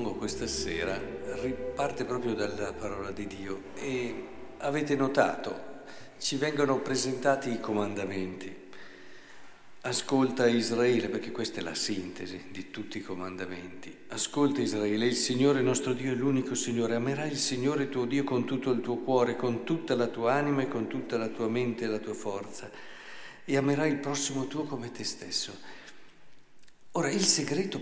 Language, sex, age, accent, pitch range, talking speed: Italian, male, 50-69, native, 115-145 Hz, 155 wpm